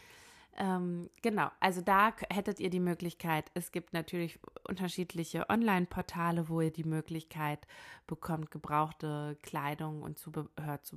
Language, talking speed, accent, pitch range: German, 125 wpm, German, 155-195 Hz